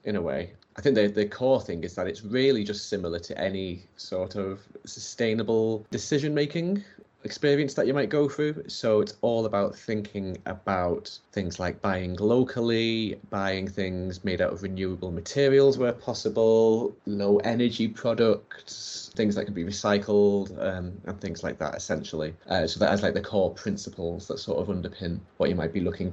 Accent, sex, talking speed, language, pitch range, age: British, male, 180 wpm, English, 95-115 Hz, 30-49